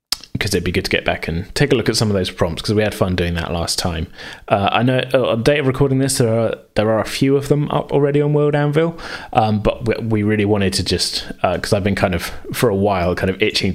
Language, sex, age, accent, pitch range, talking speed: English, male, 30-49, British, 95-120 Hz, 290 wpm